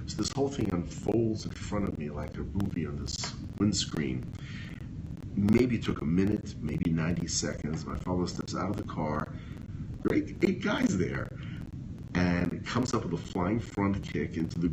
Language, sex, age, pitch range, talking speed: English, male, 50-69, 80-100 Hz, 180 wpm